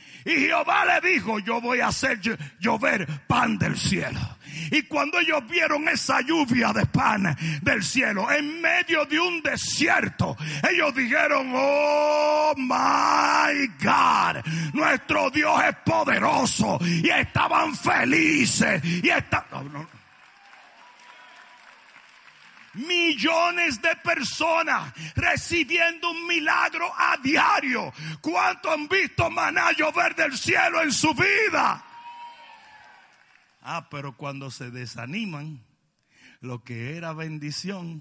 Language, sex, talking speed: Spanish, male, 105 wpm